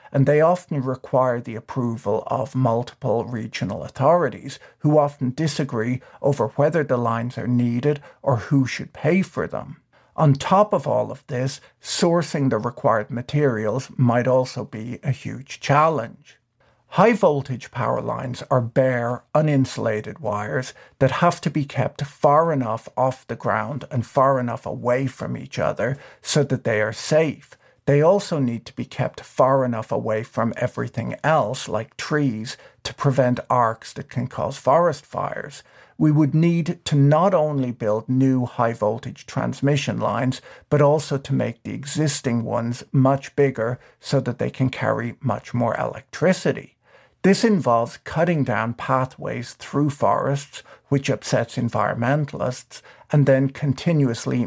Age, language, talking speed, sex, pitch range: 50-69, English, 150 wpm, male, 120-145 Hz